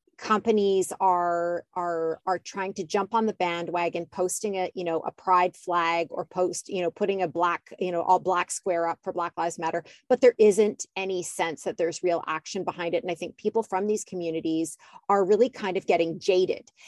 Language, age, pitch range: English, 30-49, 180-220 Hz